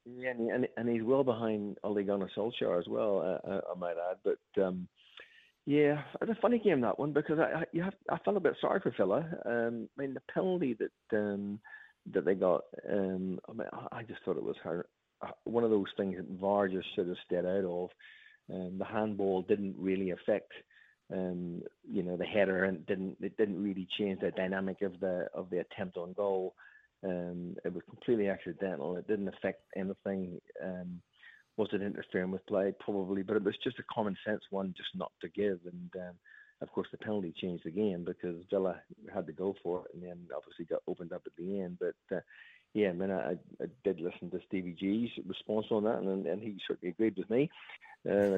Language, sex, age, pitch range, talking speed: English, male, 40-59, 95-110 Hz, 210 wpm